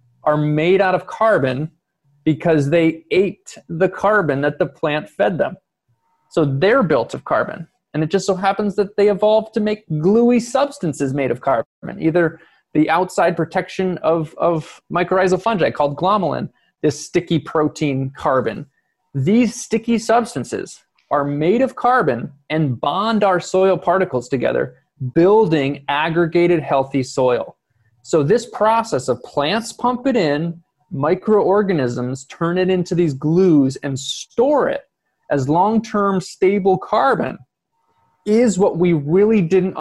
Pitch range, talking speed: 145-190 Hz, 140 wpm